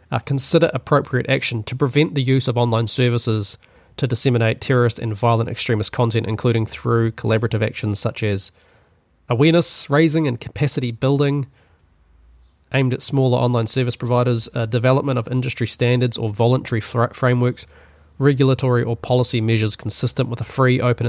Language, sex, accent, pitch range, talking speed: English, male, Australian, 110-130 Hz, 150 wpm